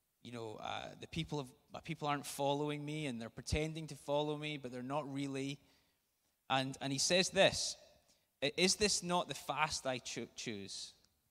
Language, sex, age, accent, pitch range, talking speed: English, male, 20-39, British, 110-145 Hz, 170 wpm